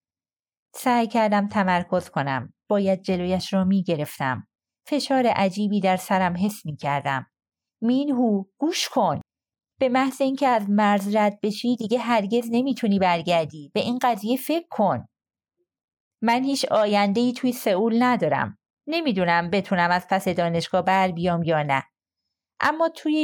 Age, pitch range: 30-49, 175-245 Hz